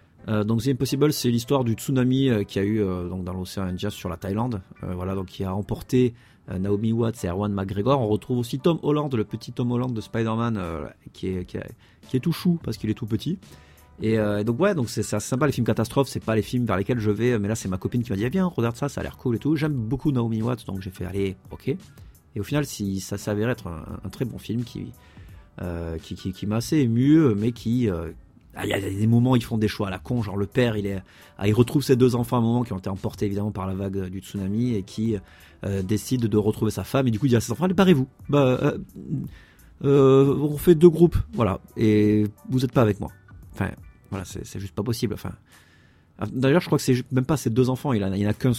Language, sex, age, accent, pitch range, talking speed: French, male, 30-49, French, 95-125 Hz, 275 wpm